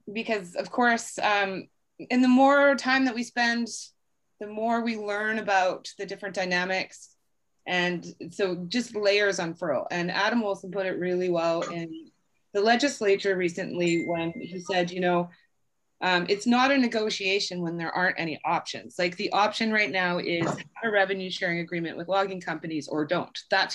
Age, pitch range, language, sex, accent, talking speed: 30-49, 170-210 Hz, English, female, American, 165 wpm